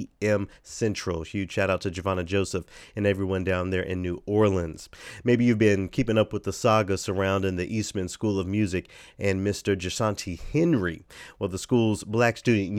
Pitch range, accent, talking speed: 90-110 Hz, American, 180 wpm